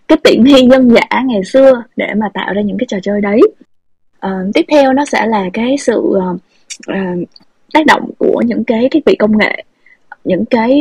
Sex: female